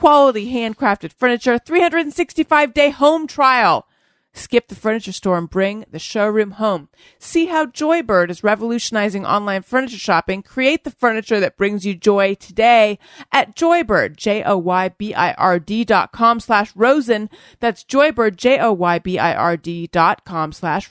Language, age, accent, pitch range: English, 30-49, American, 185-240 Hz